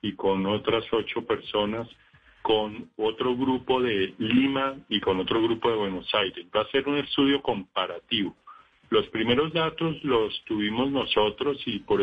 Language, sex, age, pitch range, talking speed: Spanish, male, 50-69, 105-135 Hz, 155 wpm